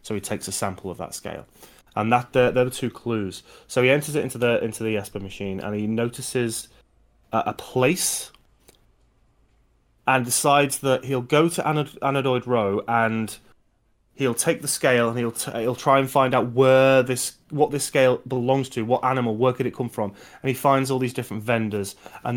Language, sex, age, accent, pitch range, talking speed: English, male, 20-39, British, 105-130 Hz, 200 wpm